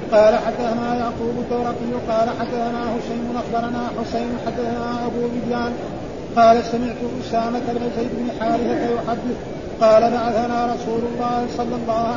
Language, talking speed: Arabic, 130 wpm